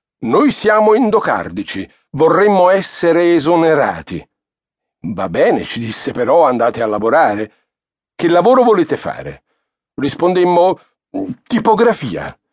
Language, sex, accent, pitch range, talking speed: Italian, male, native, 115-175 Hz, 95 wpm